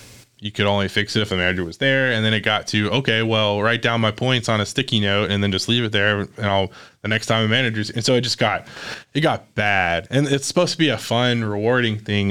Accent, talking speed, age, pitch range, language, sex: American, 270 wpm, 20-39, 100-120 Hz, English, male